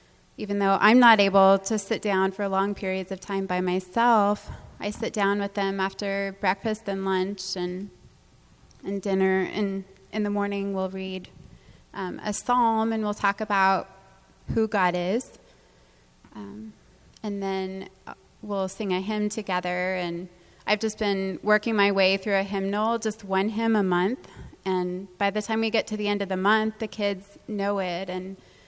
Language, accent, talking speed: English, American, 175 wpm